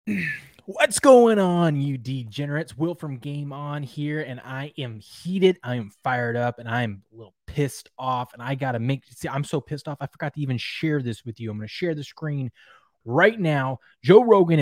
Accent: American